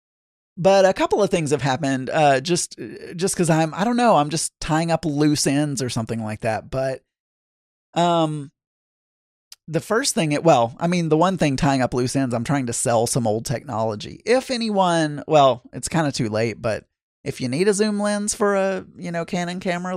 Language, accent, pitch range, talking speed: English, American, 125-170 Hz, 205 wpm